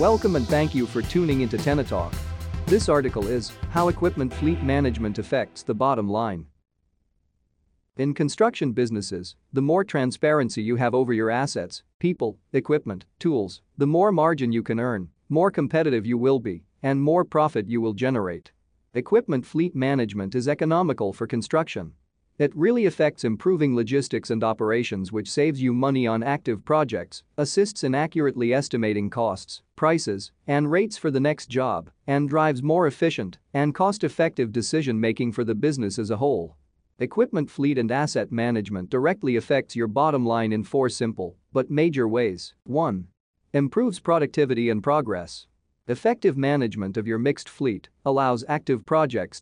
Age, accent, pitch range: 40-59, American, 110-150 Hz